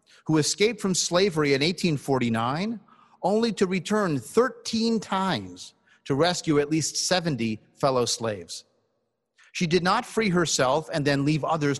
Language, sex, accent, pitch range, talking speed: English, male, American, 140-190 Hz, 135 wpm